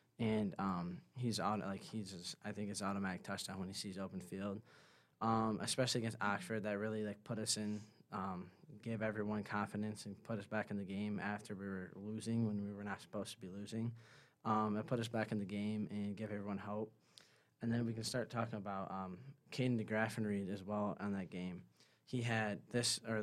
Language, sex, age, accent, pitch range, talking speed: English, male, 20-39, American, 100-115 Hz, 205 wpm